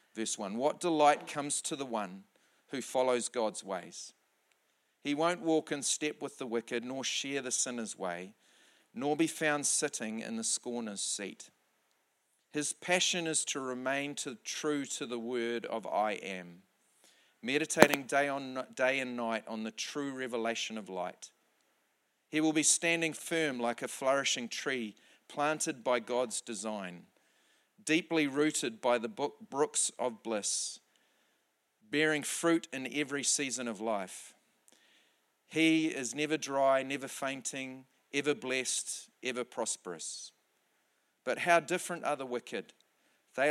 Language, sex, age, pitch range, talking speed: English, male, 40-59, 120-150 Hz, 140 wpm